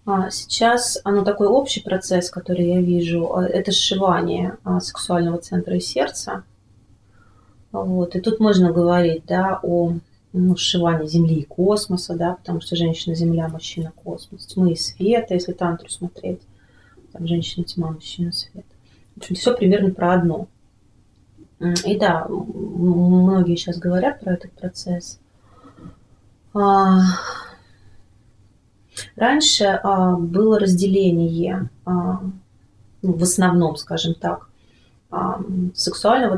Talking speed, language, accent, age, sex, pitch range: 110 wpm, Russian, native, 30-49, female, 170-190 Hz